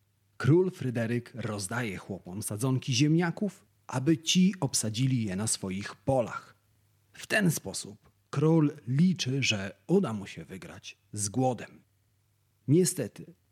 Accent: native